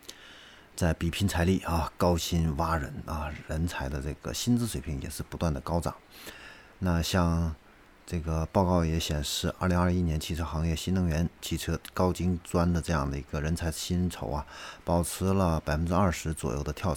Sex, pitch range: male, 75-90 Hz